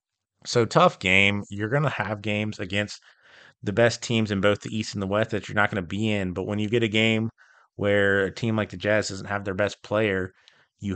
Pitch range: 105-120 Hz